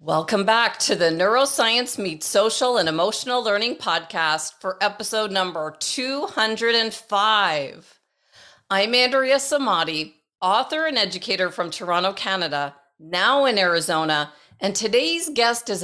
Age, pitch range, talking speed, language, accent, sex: 40-59, 175-245 Hz, 115 wpm, English, American, female